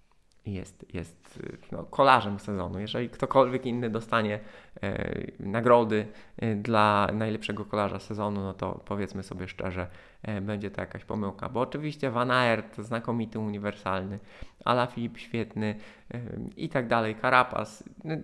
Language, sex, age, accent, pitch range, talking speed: Polish, male, 20-39, native, 105-145 Hz, 135 wpm